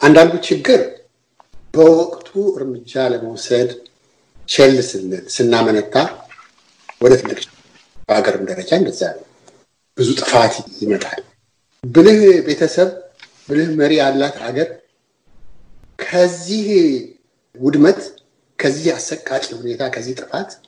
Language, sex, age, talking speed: Amharic, male, 50-69, 55 wpm